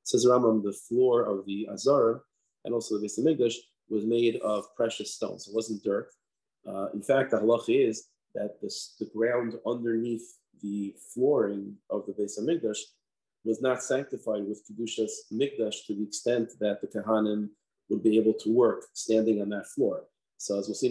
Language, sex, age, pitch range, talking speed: English, male, 30-49, 105-120 Hz, 170 wpm